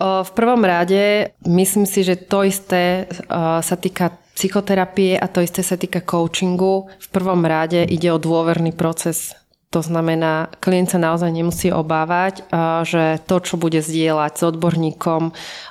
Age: 30-49